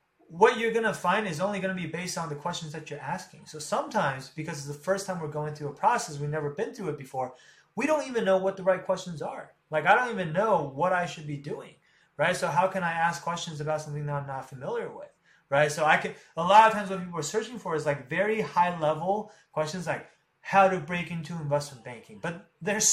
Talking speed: 245 wpm